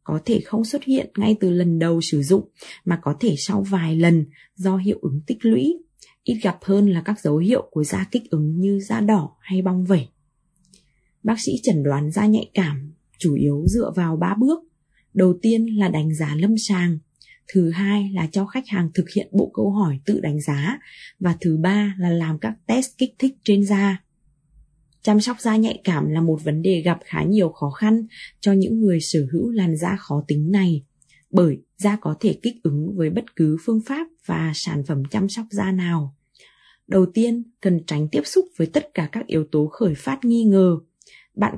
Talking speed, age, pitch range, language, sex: 205 wpm, 20-39, 155-205 Hz, Vietnamese, female